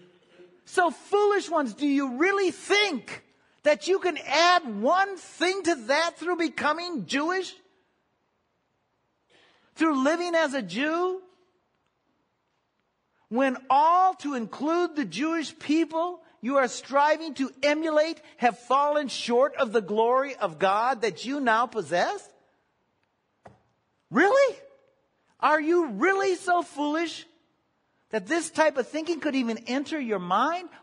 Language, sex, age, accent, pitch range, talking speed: English, male, 50-69, American, 265-345 Hz, 125 wpm